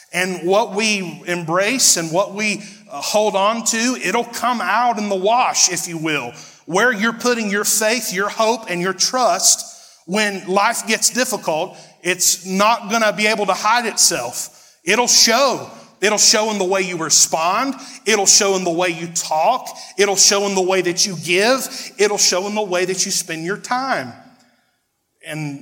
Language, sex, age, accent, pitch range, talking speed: English, male, 30-49, American, 165-210 Hz, 180 wpm